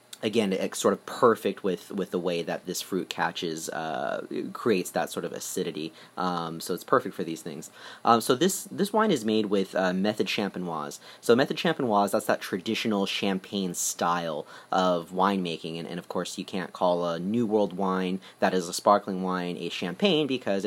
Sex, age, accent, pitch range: male, 30-49, American, 90-110 Hz